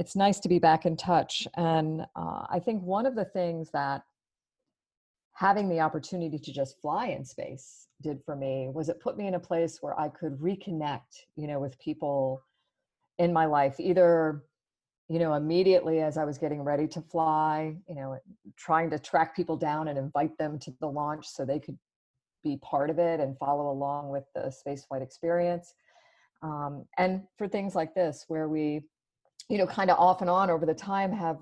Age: 40-59